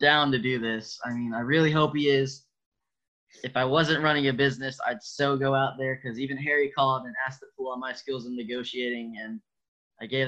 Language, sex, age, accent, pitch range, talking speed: English, male, 10-29, American, 115-135 Hz, 220 wpm